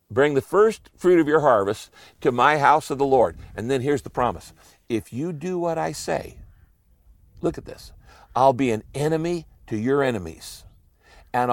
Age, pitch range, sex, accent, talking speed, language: 60-79, 95-135 Hz, male, American, 180 wpm, English